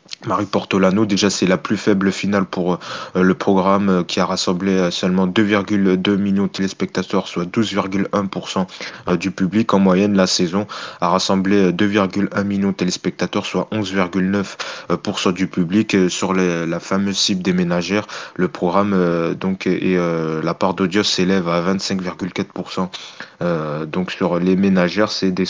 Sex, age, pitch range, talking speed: male, 20-39, 90-105 Hz, 140 wpm